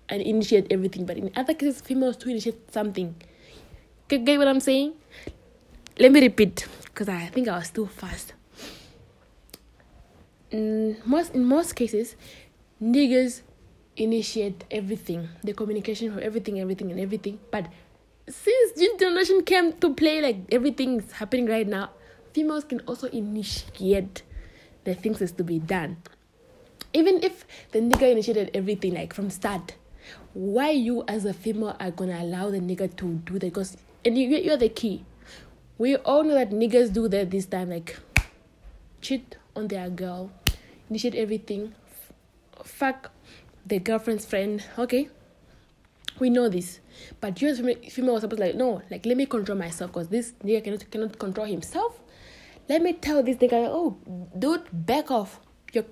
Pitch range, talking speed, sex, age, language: 195-255 Hz, 160 wpm, female, 20-39, English